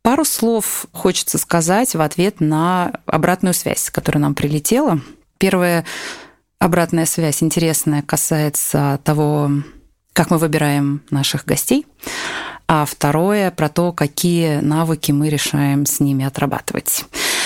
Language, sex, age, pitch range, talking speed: Russian, female, 20-39, 145-170 Hz, 115 wpm